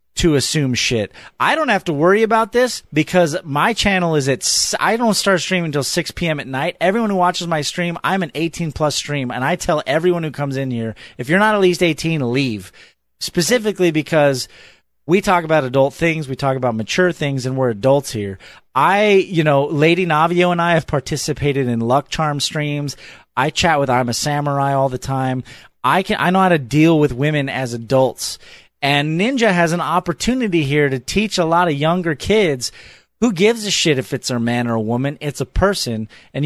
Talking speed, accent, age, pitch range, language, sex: 205 wpm, American, 30-49, 135-185 Hz, English, male